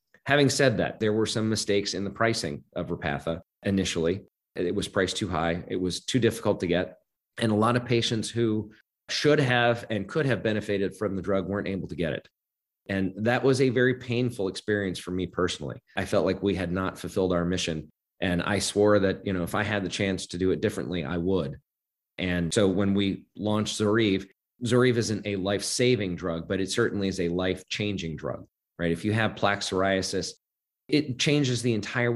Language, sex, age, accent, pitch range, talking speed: English, male, 30-49, American, 90-115 Hz, 200 wpm